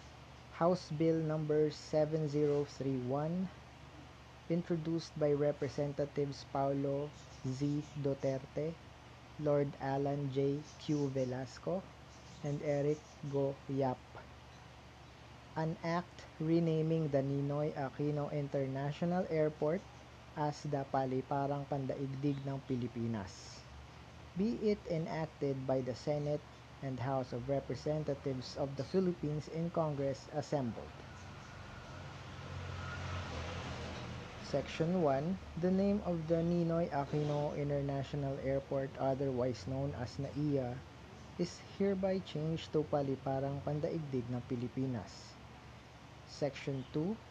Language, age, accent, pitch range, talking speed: English, 20-39, Filipino, 135-160 Hz, 100 wpm